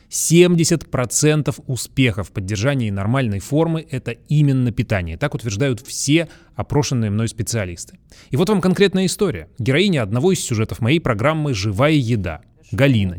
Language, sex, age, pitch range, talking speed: Russian, male, 20-39, 110-150 Hz, 125 wpm